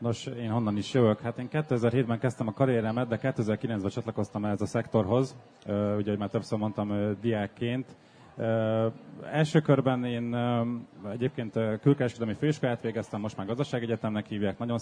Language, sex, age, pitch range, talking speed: Hungarian, male, 30-49, 105-125 Hz, 140 wpm